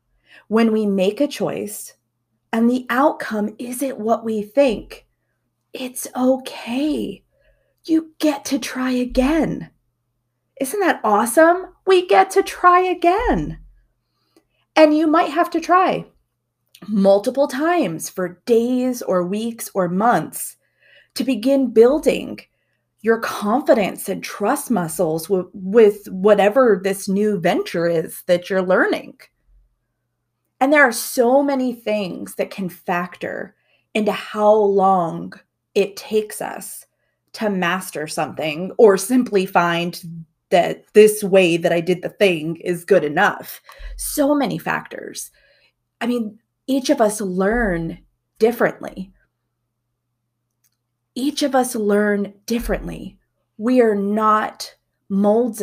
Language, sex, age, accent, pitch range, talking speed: English, female, 30-49, American, 175-255 Hz, 120 wpm